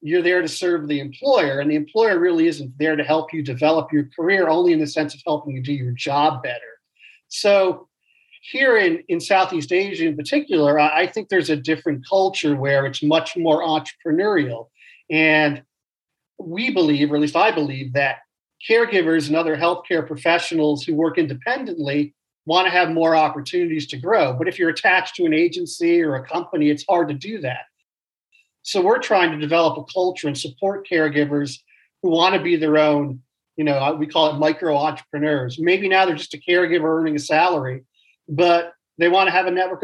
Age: 40-59